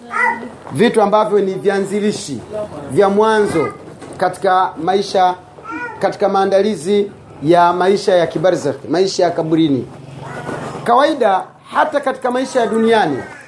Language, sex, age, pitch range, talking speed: Swahili, male, 40-59, 185-225 Hz, 105 wpm